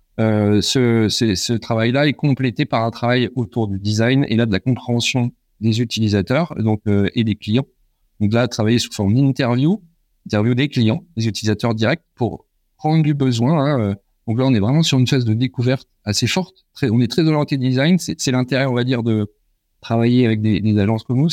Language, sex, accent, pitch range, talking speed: French, male, French, 110-135 Hz, 210 wpm